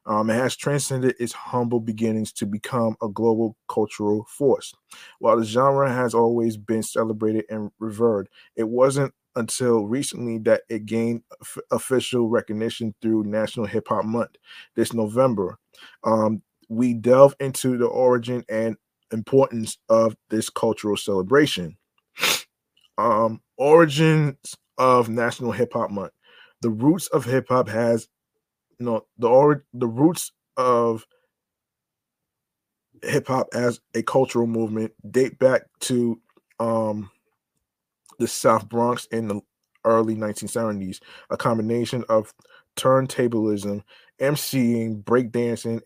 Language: English